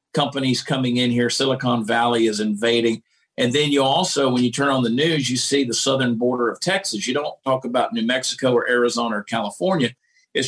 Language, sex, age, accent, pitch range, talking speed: English, male, 50-69, American, 120-150 Hz, 205 wpm